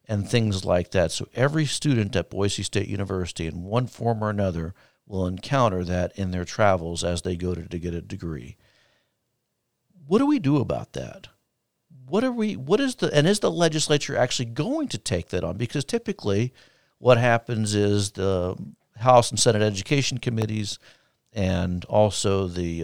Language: English